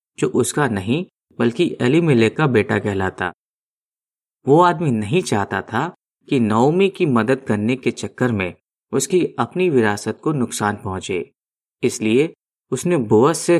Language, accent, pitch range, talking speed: Hindi, native, 110-135 Hz, 140 wpm